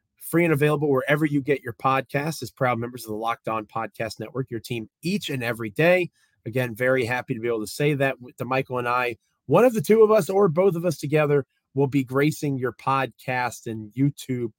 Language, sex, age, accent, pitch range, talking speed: English, male, 30-49, American, 120-150 Hz, 220 wpm